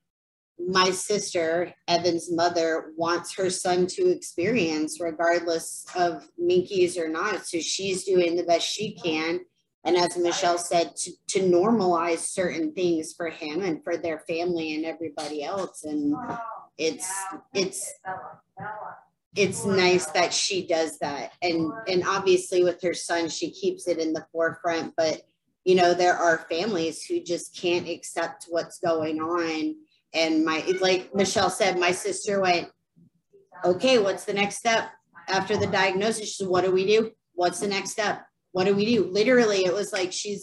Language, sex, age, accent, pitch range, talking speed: English, female, 30-49, American, 170-195 Hz, 160 wpm